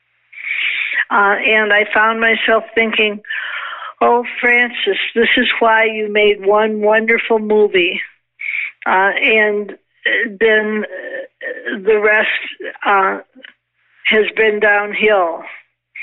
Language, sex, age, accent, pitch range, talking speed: English, female, 60-79, American, 210-245 Hz, 95 wpm